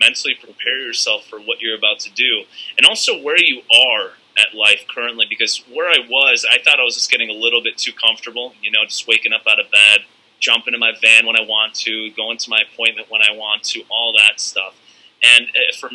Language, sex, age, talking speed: English, male, 30-49, 230 wpm